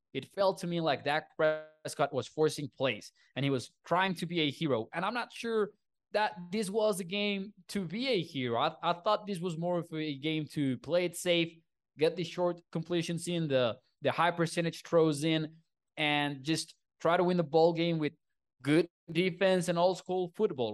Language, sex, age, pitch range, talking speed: English, male, 20-39, 140-175 Hz, 205 wpm